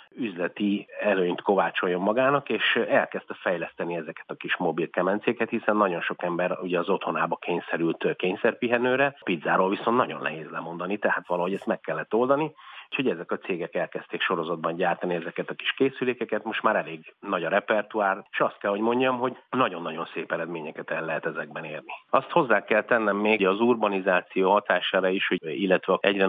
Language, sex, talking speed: Hungarian, male, 170 wpm